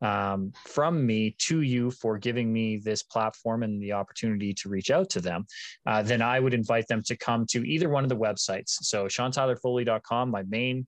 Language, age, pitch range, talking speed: English, 20-39, 105-125 Hz, 200 wpm